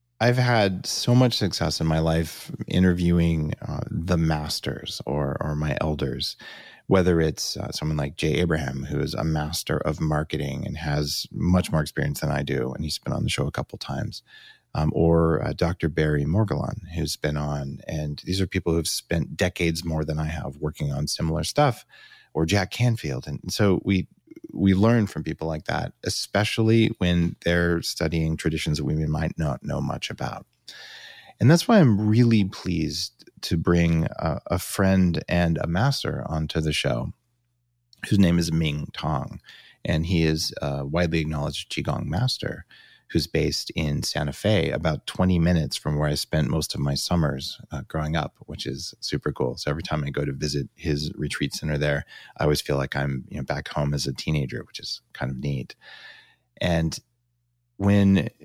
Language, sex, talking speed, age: English, male, 185 wpm, 30-49